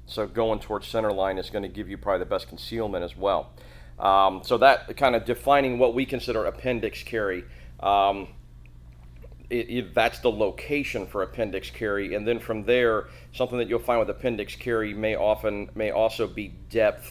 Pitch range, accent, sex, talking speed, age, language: 85-110 Hz, American, male, 185 wpm, 40-59, English